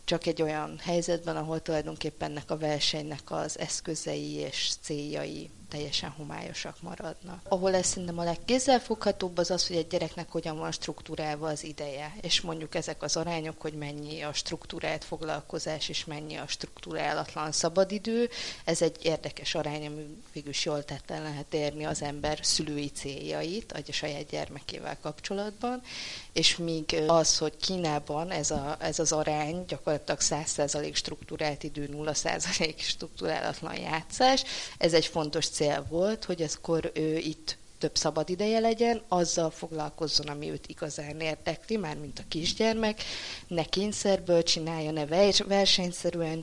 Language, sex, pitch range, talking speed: Hungarian, female, 150-175 Hz, 140 wpm